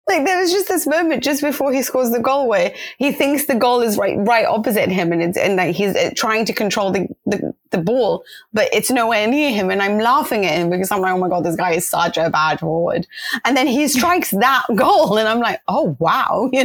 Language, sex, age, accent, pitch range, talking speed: English, female, 30-49, British, 190-290 Hz, 250 wpm